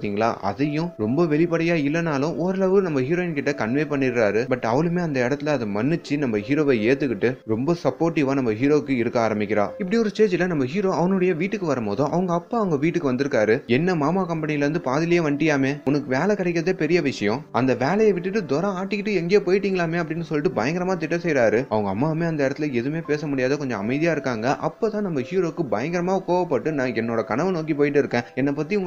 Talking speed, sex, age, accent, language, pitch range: 85 wpm, male, 30-49, native, Tamil, 135-180 Hz